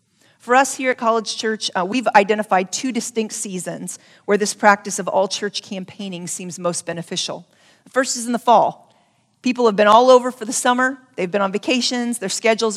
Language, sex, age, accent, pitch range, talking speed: English, female, 40-59, American, 195-240 Hz, 195 wpm